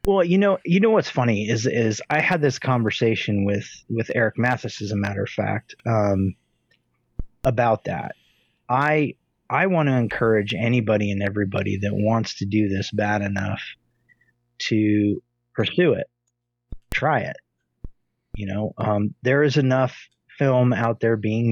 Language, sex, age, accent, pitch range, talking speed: English, male, 30-49, American, 105-125 Hz, 155 wpm